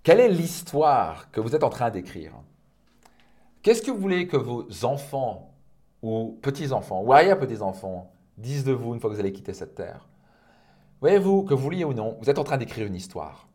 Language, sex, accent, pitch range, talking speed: French, male, French, 105-130 Hz, 195 wpm